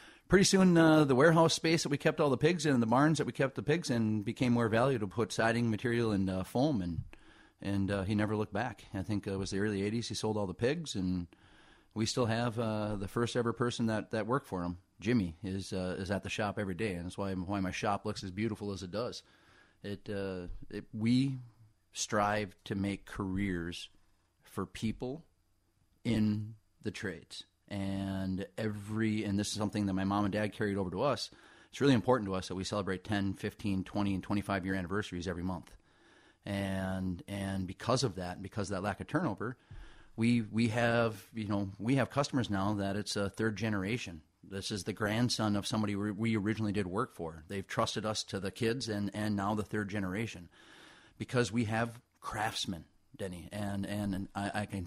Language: English